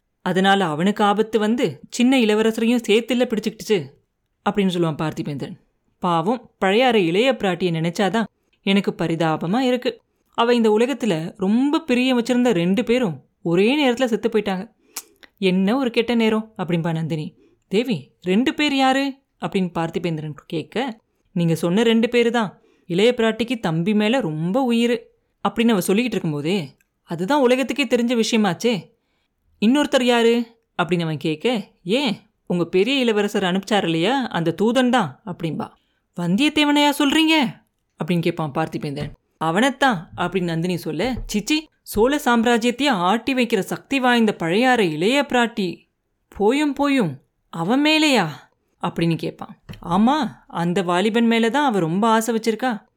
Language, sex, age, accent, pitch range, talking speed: Tamil, female, 30-49, native, 175-245 Hz, 125 wpm